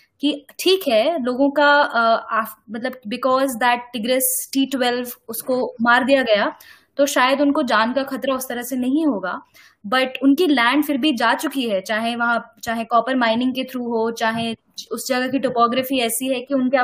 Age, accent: 20-39, native